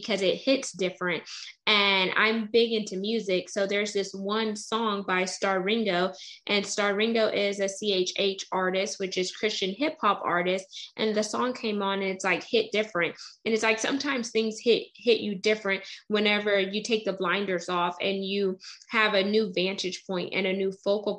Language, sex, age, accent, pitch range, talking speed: English, female, 10-29, American, 195-230 Hz, 185 wpm